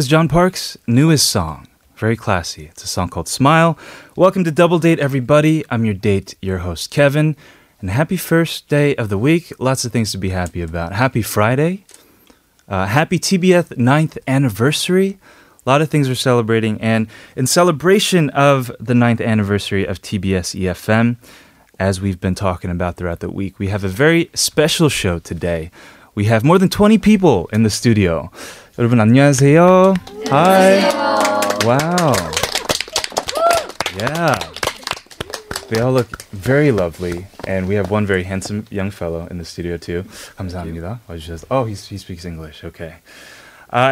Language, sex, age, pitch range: Korean, male, 20-39, 95-155 Hz